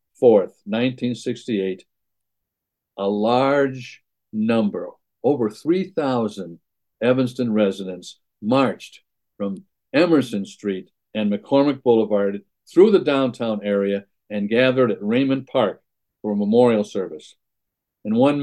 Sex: male